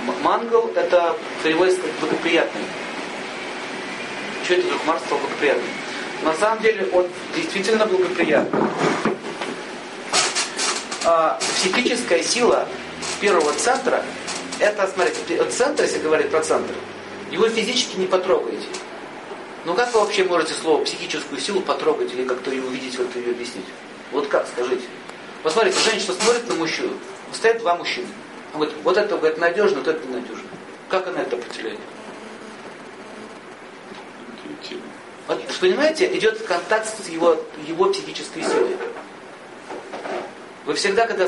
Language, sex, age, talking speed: Russian, male, 40-59, 125 wpm